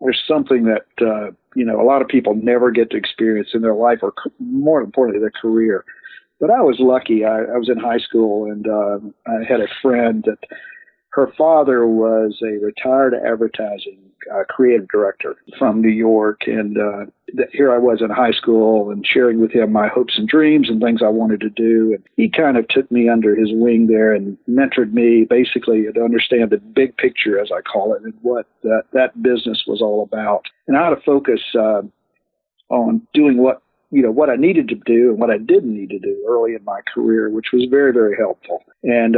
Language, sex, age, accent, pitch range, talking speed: English, male, 50-69, American, 110-130 Hz, 210 wpm